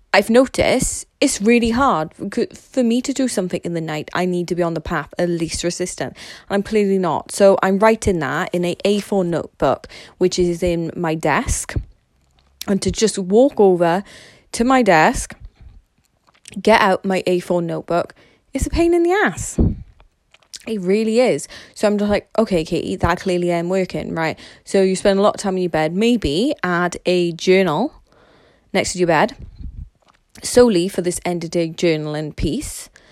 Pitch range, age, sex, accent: 175-220 Hz, 20-39, female, British